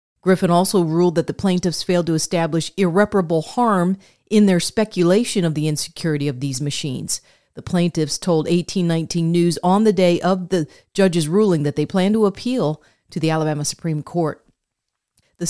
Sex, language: female, English